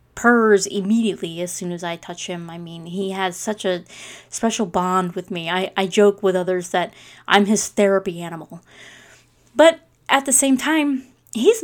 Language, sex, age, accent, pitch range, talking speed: English, female, 20-39, American, 180-235 Hz, 175 wpm